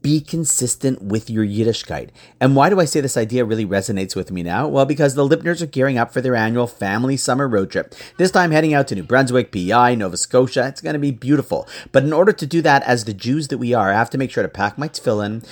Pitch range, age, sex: 105-145 Hz, 40-59, male